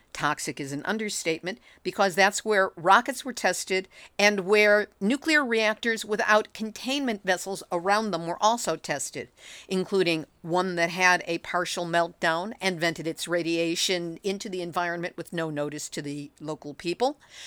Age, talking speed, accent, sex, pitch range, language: 50-69, 150 wpm, American, female, 175-220 Hz, English